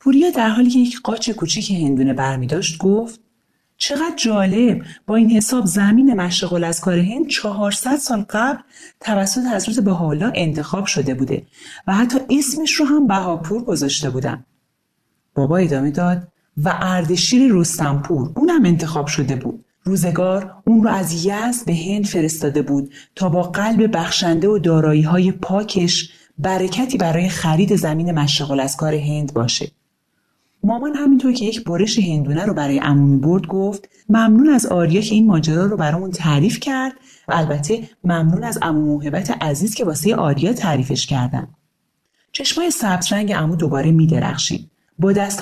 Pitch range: 160-220 Hz